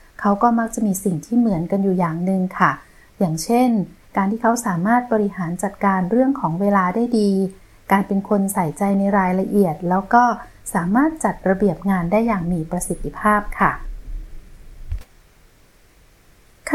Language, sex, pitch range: Thai, female, 190-235 Hz